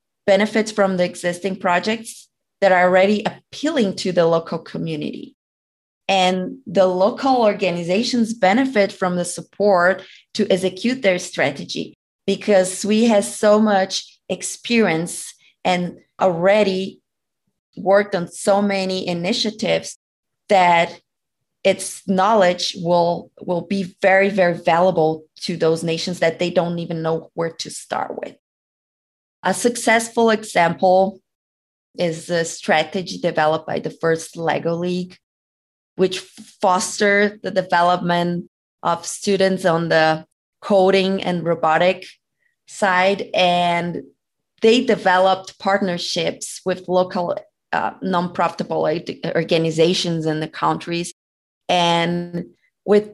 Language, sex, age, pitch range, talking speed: English, female, 20-39, 170-200 Hz, 110 wpm